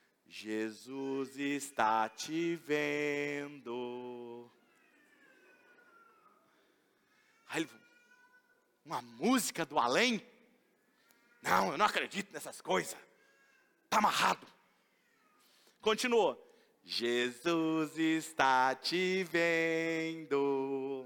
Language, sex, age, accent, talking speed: Portuguese, male, 40-59, Brazilian, 65 wpm